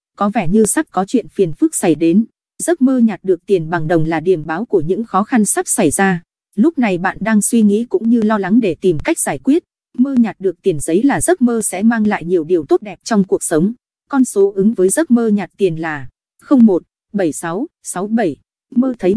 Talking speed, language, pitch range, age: 225 wpm, Vietnamese, 180-240 Hz, 20-39